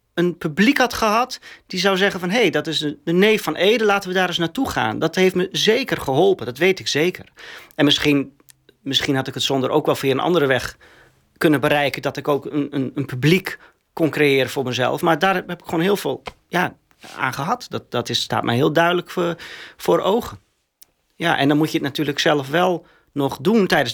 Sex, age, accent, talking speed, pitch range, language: male, 40-59, Dutch, 225 wpm, 135-180 Hz, Dutch